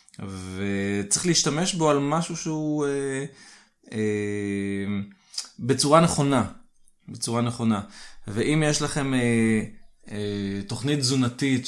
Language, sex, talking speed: Hebrew, male, 100 wpm